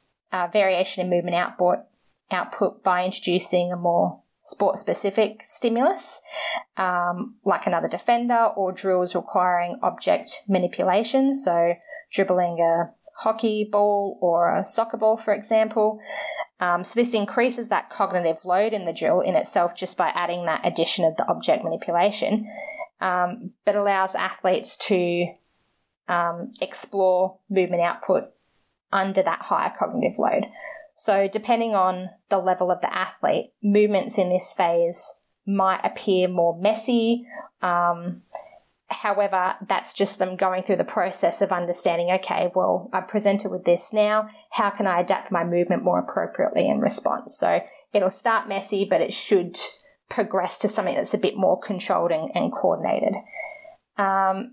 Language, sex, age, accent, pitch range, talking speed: English, female, 20-39, Australian, 180-220 Hz, 140 wpm